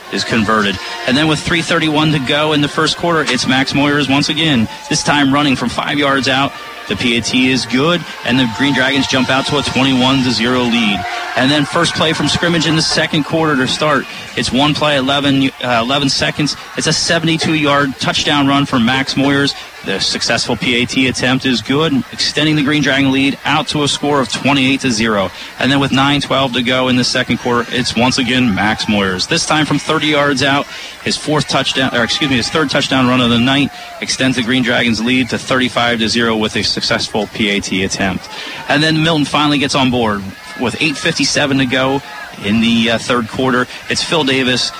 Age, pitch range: 30-49, 120-145 Hz